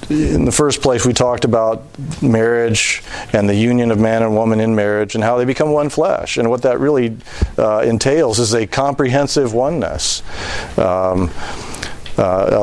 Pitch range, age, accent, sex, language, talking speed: 110-130 Hz, 40-59, American, male, English, 165 wpm